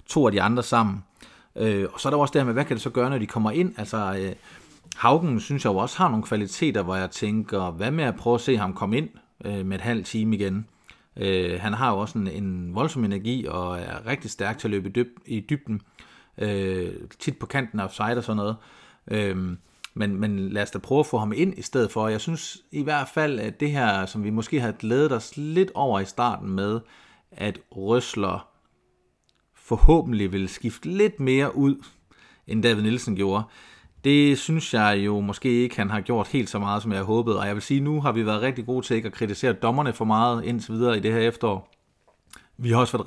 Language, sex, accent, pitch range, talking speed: Danish, male, native, 100-125 Hz, 235 wpm